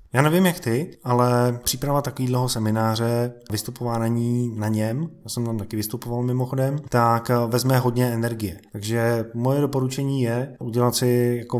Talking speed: 155 wpm